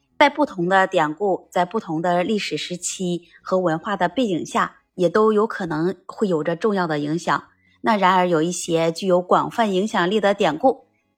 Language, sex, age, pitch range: Chinese, female, 20-39, 165-225 Hz